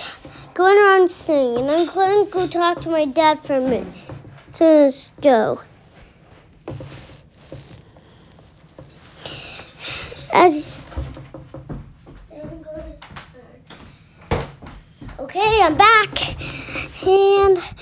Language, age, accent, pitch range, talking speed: English, 10-29, American, 295-360 Hz, 80 wpm